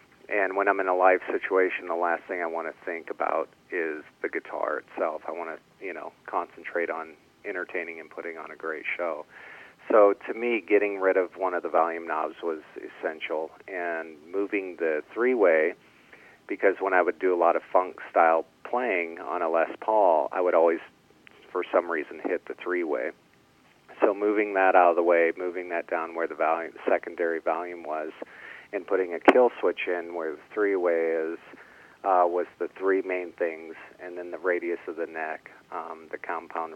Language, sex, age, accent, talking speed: English, male, 40-59, American, 185 wpm